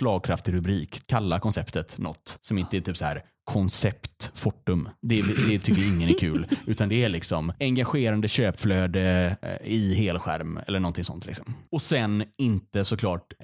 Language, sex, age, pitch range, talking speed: Swedish, male, 30-49, 90-110 Hz, 155 wpm